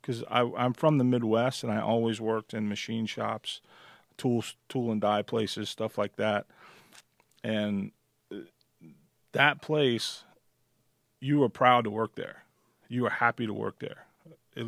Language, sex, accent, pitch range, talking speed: English, male, American, 110-130 Hz, 145 wpm